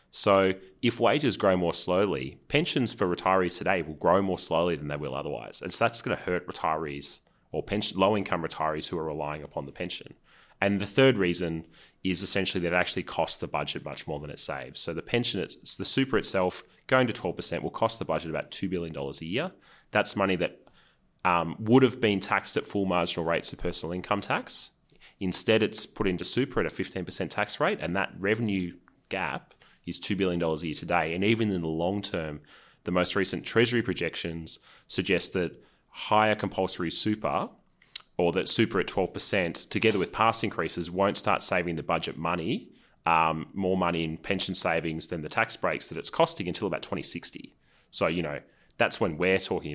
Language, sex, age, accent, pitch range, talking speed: English, male, 30-49, Australian, 80-100 Hz, 190 wpm